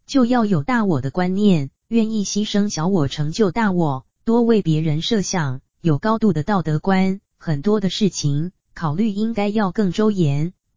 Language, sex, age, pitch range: Chinese, female, 20-39, 160-205 Hz